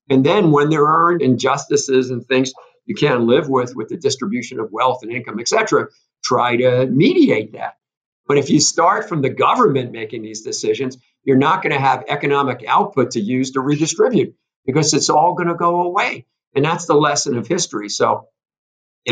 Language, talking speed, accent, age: English, 185 wpm, American, 50-69